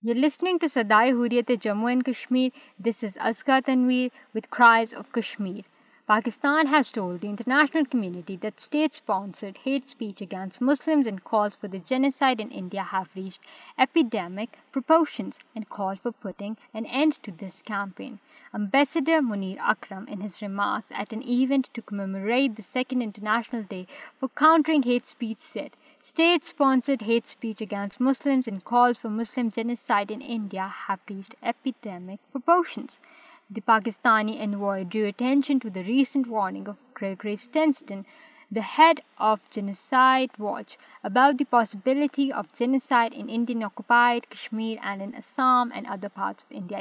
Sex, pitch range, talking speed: female, 205-270 Hz, 150 wpm